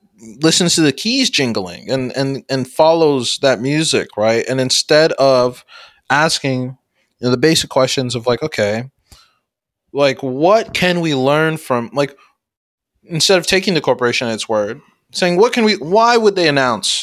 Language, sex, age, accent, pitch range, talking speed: English, male, 20-39, American, 120-160 Hz, 165 wpm